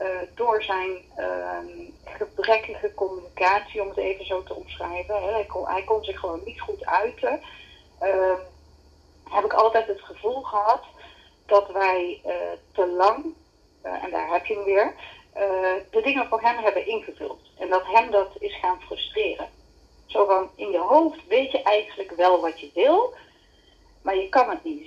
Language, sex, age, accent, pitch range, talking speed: Dutch, female, 40-59, Dutch, 190-305 Hz, 170 wpm